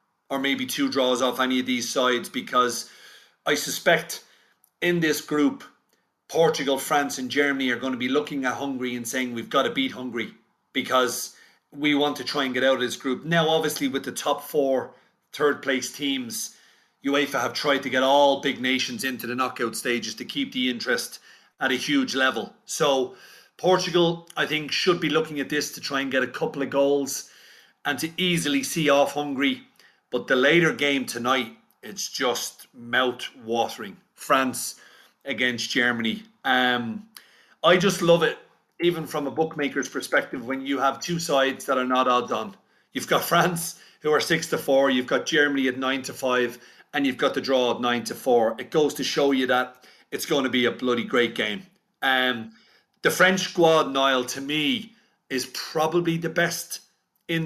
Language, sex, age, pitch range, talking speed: English, male, 40-59, 130-165 Hz, 185 wpm